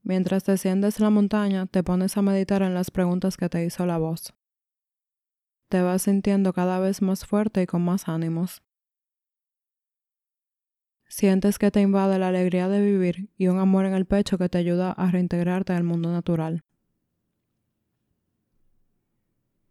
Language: Spanish